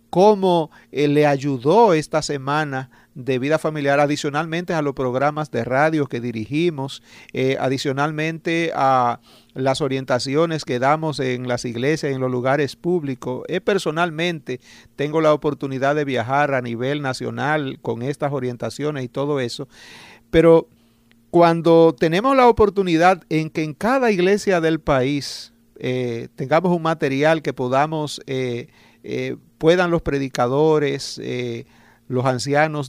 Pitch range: 130-155 Hz